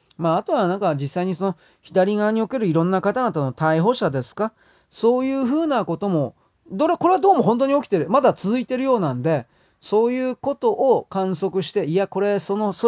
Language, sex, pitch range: Japanese, male, 150-235 Hz